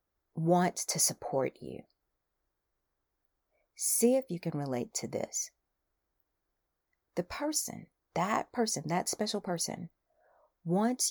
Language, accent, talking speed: English, American, 105 wpm